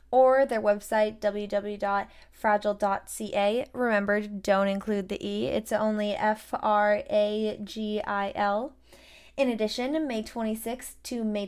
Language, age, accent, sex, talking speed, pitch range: English, 20-39, American, female, 95 wpm, 210-255 Hz